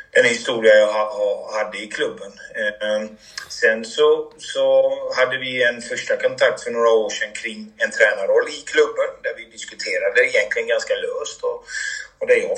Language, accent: Swedish, native